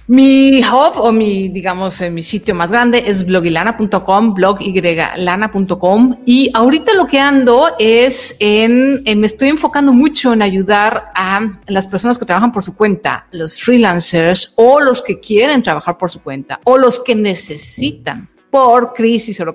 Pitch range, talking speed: 175-230 Hz, 165 wpm